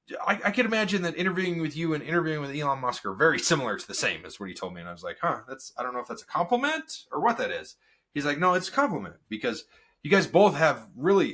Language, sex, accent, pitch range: English, male, American, 105-170 Hz